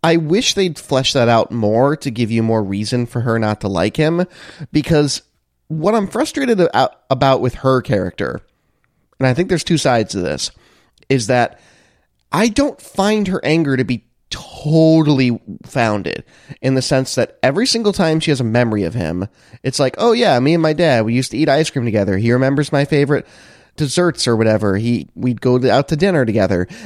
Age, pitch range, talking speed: 30-49, 110-155 Hz, 195 wpm